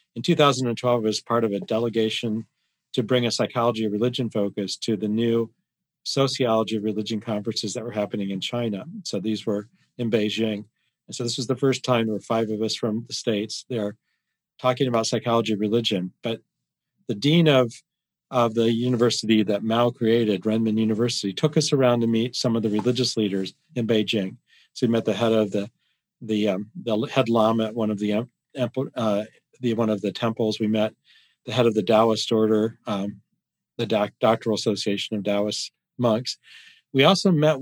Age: 40-59